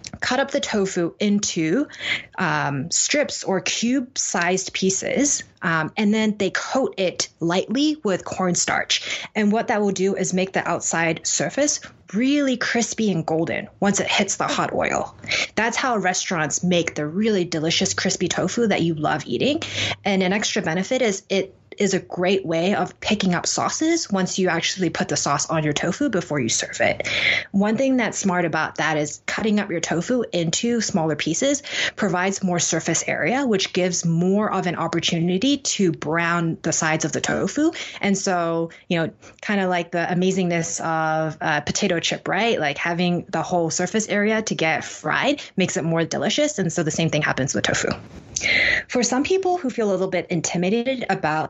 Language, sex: English, female